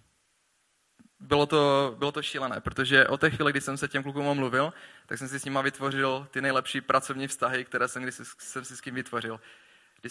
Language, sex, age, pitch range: Czech, male, 20-39, 130-140 Hz